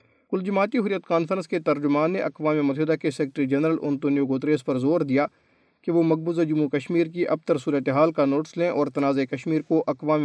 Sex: male